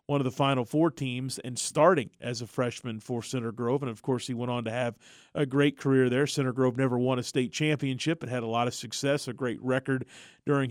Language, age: English, 40-59